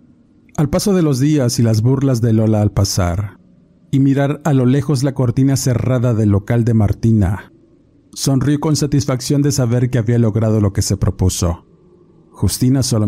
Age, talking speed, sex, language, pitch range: 50-69, 175 wpm, male, Spanish, 100-130 Hz